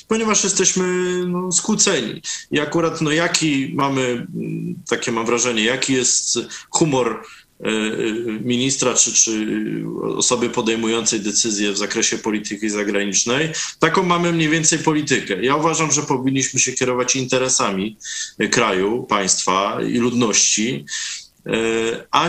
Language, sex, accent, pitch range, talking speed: Polish, male, native, 110-155 Hz, 110 wpm